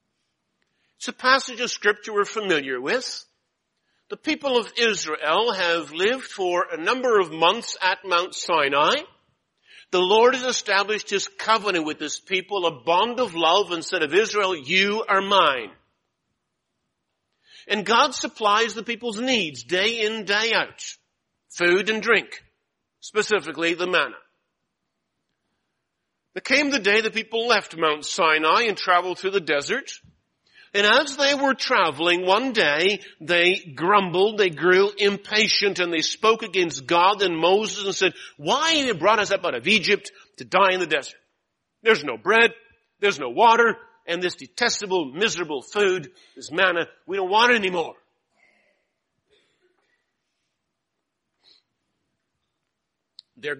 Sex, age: male, 50-69